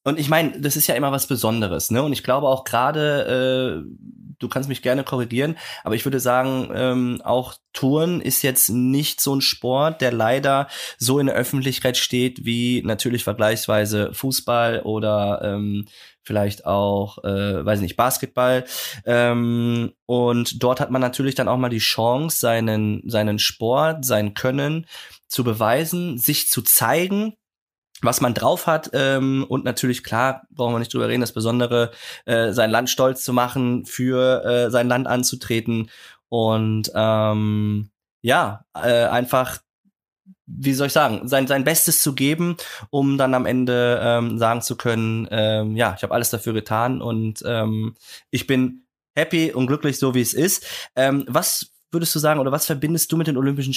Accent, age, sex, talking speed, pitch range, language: German, 20-39, male, 170 wpm, 115-140 Hz, German